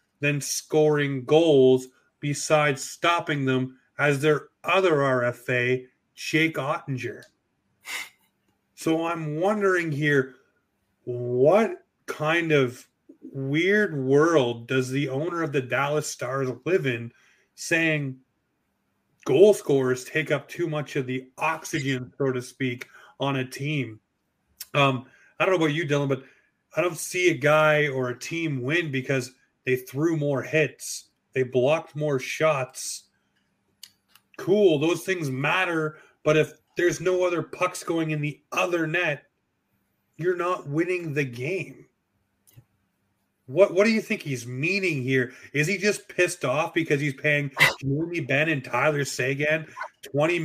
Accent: American